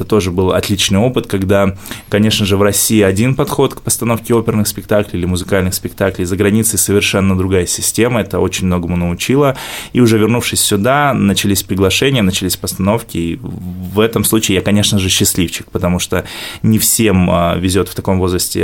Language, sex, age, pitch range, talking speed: Russian, male, 20-39, 95-110 Hz, 165 wpm